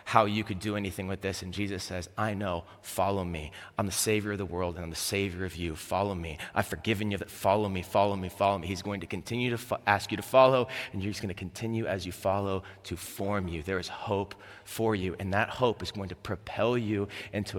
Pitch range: 95-115 Hz